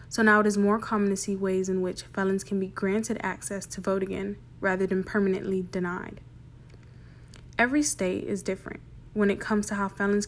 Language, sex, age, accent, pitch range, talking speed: English, female, 10-29, American, 185-210 Hz, 195 wpm